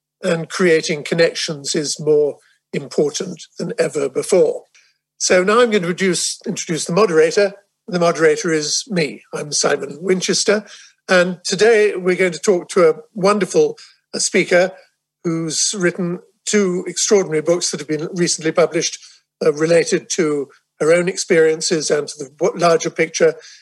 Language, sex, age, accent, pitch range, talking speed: English, male, 50-69, British, 160-260 Hz, 140 wpm